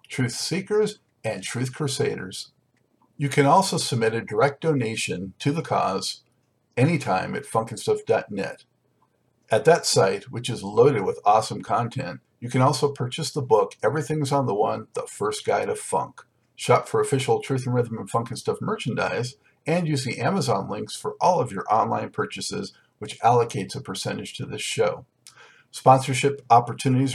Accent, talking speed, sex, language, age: American, 160 wpm, male, English, 50-69